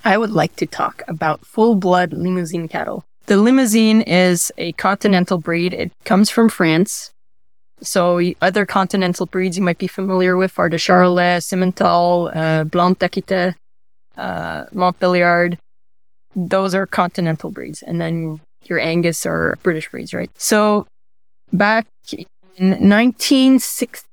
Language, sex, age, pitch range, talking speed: English, female, 20-39, 170-195 Hz, 130 wpm